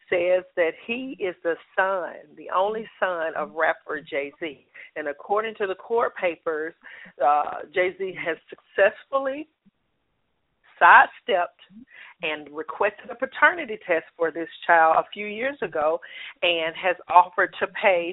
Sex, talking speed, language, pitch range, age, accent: female, 130 wpm, English, 165-215 Hz, 40-59, American